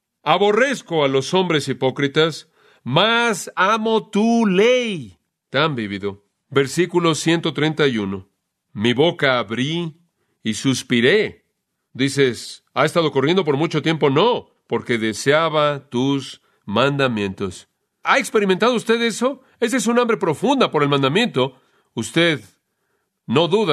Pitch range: 130-175 Hz